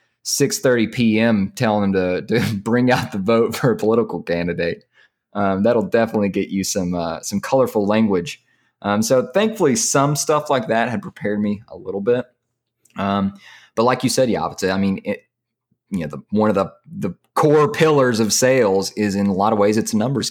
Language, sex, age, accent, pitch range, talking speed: English, male, 20-39, American, 95-115 Hz, 200 wpm